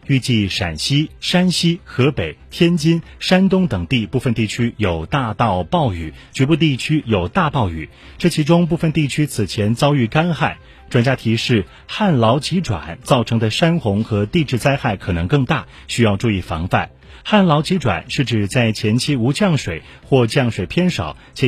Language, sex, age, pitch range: Chinese, male, 30-49, 105-150 Hz